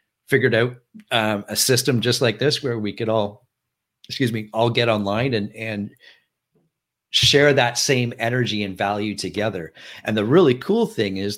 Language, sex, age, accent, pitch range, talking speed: English, male, 50-69, American, 105-130 Hz, 170 wpm